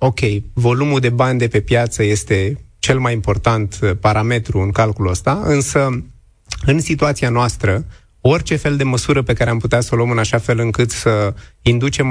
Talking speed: 180 wpm